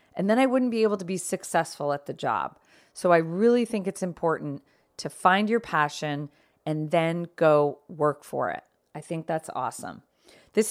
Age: 40-59